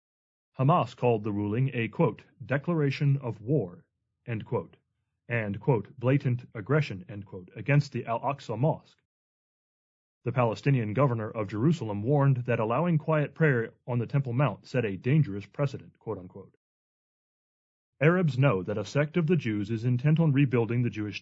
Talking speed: 155 wpm